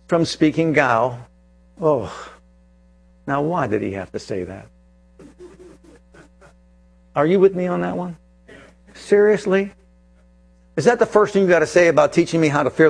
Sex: male